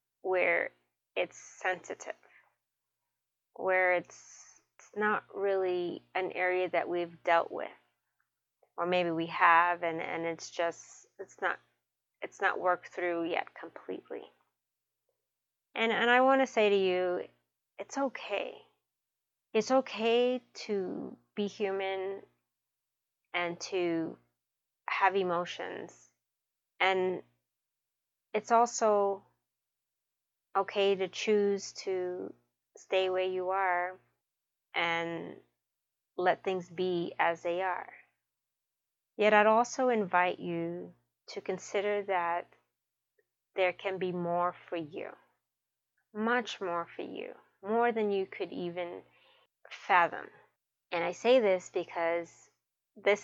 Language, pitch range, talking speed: English, 165-195 Hz, 110 wpm